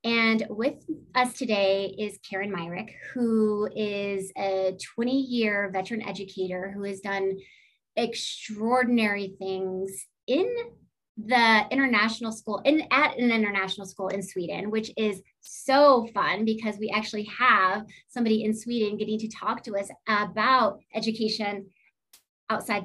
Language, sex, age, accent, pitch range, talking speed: English, female, 30-49, American, 200-230 Hz, 125 wpm